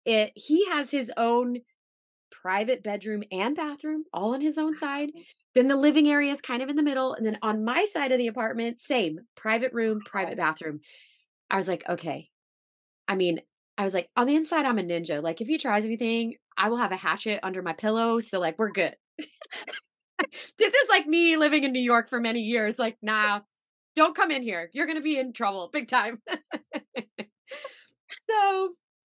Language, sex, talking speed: English, female, 195 wpm